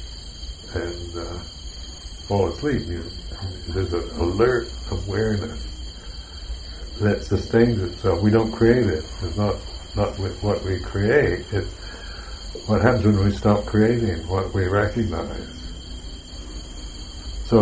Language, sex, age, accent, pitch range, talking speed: English, male, 60-79, American, 75-105 Hz, 115 wpm